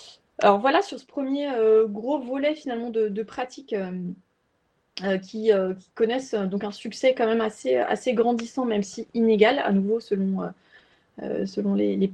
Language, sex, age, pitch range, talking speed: French, female, 20-39, 210-260 Hz, 155 wpm